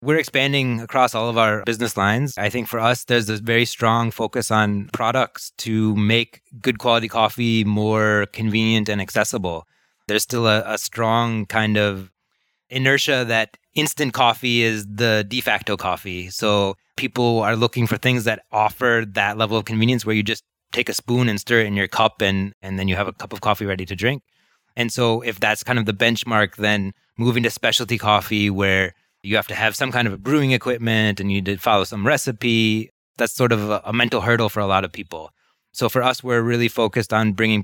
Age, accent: 20-39, American